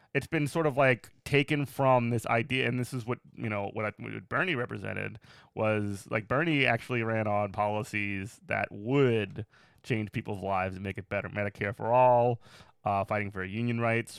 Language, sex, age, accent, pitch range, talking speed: English, male, 30-49, American, 110-140 Hz, 185 wpm